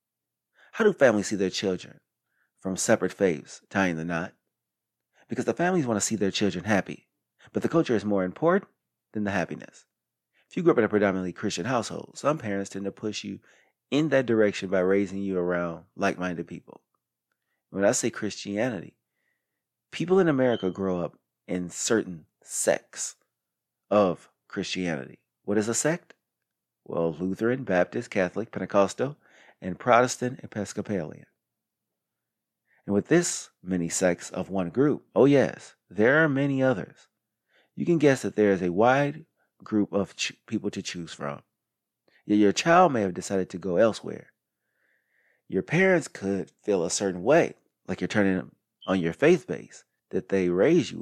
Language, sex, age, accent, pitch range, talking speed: English, male, 30-49, American, 90-115 Hz, 160 wpm